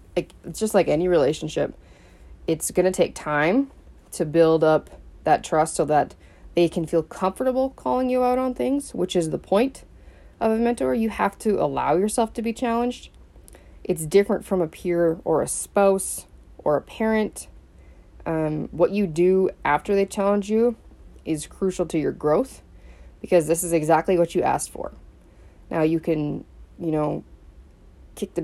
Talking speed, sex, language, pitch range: 170 wpm, female, English, 150-190 Hz